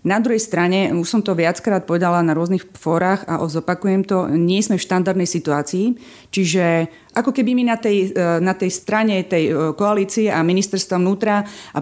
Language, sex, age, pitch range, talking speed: Slovak, female, 30-49, 170-205 Hz, 175 wpm